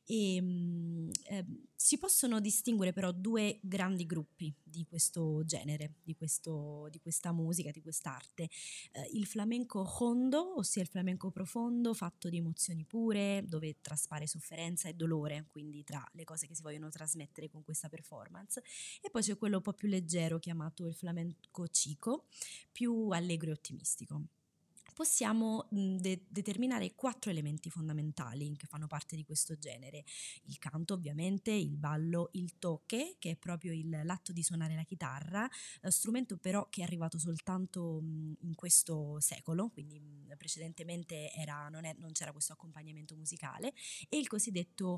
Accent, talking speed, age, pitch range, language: native, 150 wpm, 20-39, 155-200 Hz, Italian